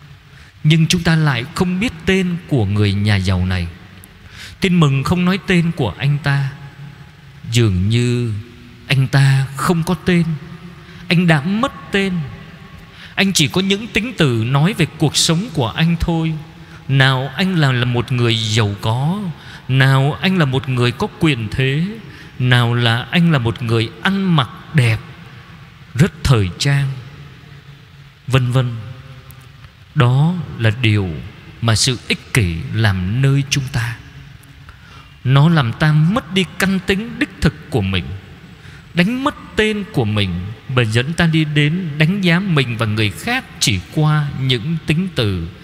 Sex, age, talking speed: male, 20-39, 155 wpm